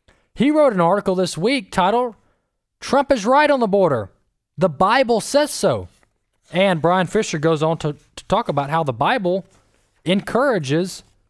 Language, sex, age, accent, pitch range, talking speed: English, male, 20-39, American, 145-205 Hz, 160 wpm